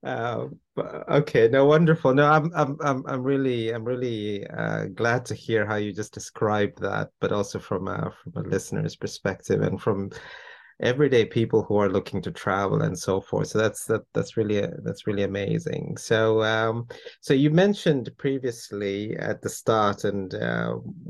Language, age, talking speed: English, 30-49, 175 wpm